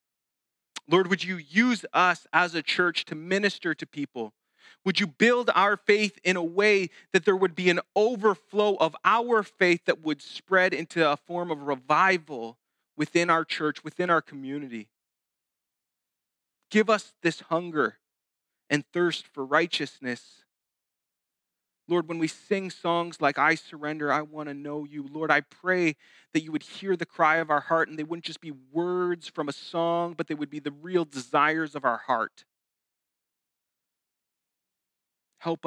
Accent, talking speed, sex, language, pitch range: American, 160 wpm, male, English, 140-180 Hz